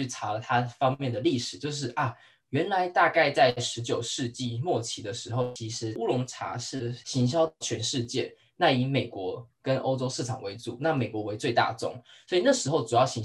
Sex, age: male, 10-29